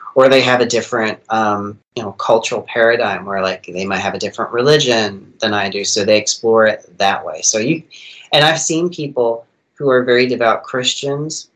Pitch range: 110-135 Hz